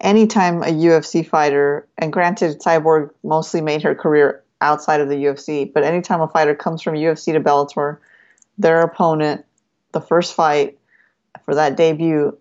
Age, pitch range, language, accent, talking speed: 30-49, 150-180 Hz, English, American, 155 wpm